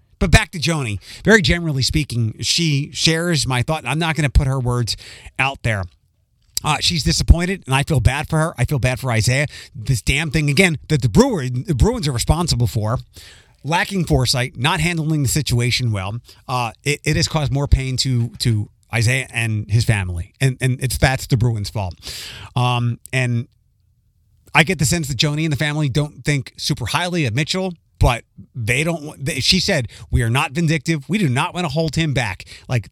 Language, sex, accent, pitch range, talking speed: English, male, American, 110-150 Hz, 200 wpm